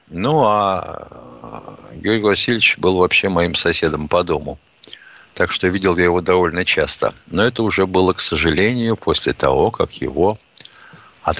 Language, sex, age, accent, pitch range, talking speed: Russian, male, 60-79, native, 90-125 Hz, 145 wpm